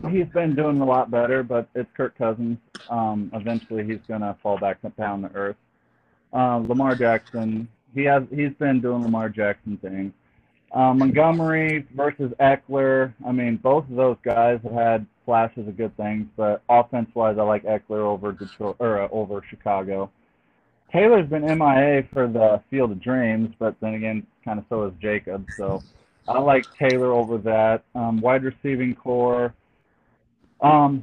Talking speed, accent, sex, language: 170 wpm, American, male, English